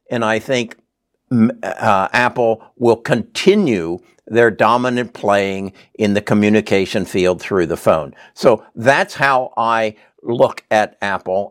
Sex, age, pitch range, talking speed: male, 60-79, 105-135 Hz, 125 wpm